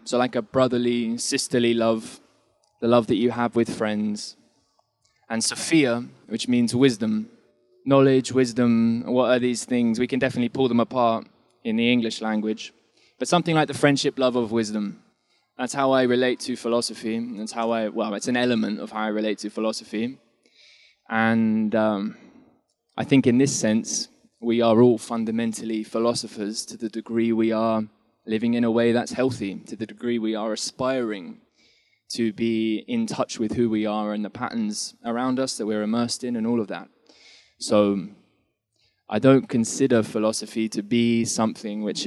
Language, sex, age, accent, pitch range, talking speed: English, male, 20-39, British, 110-125 Hz, 170 wpm